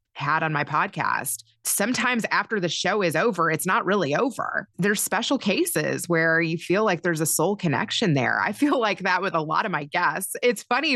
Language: English